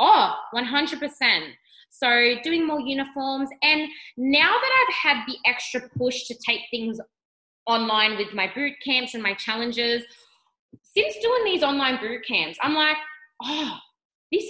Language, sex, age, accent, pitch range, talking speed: English, female, 20-39, Australian, 230-305 Hz, 155 wpm